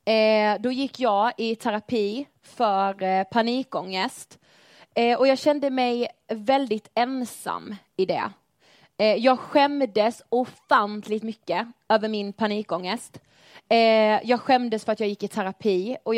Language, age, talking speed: Swedish, 30-49, 115 wpm